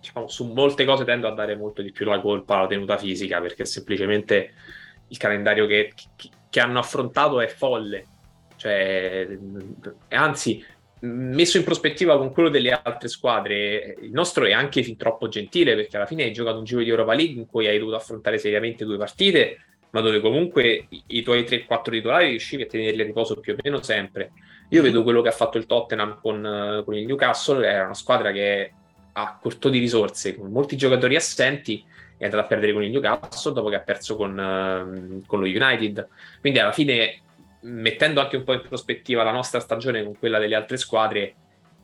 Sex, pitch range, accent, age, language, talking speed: male, 105-120 Hz, native, 20-39, Italian, 185 wpm